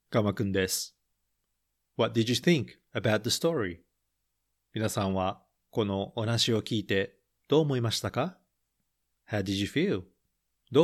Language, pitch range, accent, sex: Japanese, 95-135 Hz, native, male